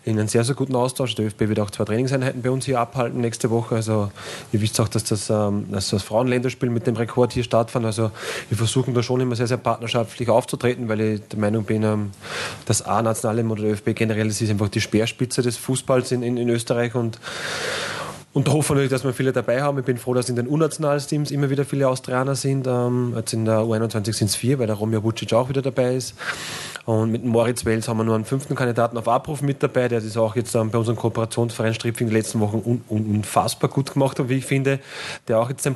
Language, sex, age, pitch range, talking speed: German, male, 20-39, 110-125 Hz, 230 wpm